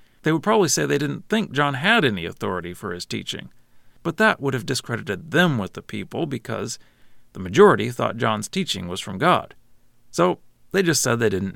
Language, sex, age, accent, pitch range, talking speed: English, male, 40-59, American, 120-170 Hz, 195 wpm